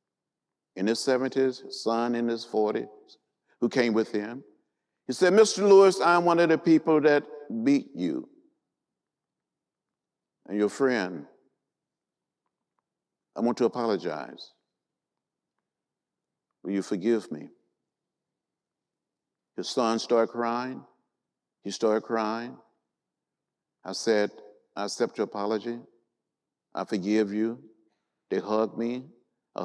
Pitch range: 115-185 Hz